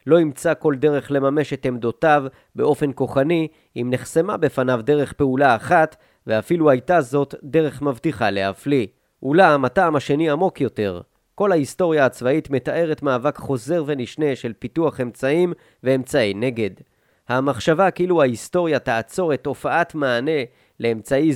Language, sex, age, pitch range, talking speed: Hebrew, male, 30-49, 125-155 Hz, 130 wpm